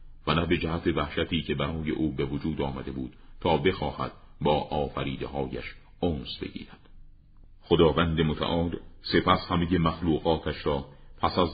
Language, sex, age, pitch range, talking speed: Persian, male, 40-59, 75-85 Hz, 135 wpm